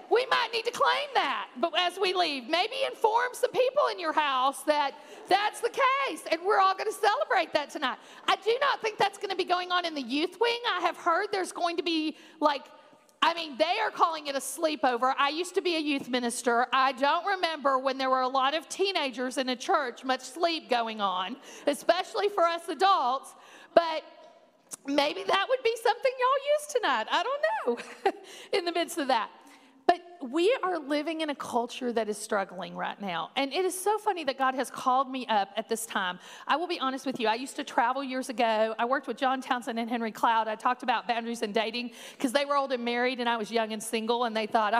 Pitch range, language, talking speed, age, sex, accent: 255-355 Hz, English, 230 wpm, 50-69, female, American